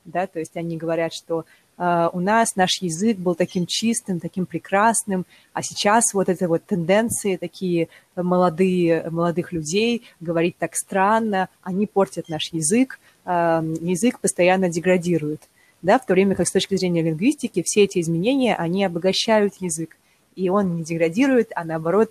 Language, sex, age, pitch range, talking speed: Russian, female, 20-39, 170-215 Hz, 155 wpm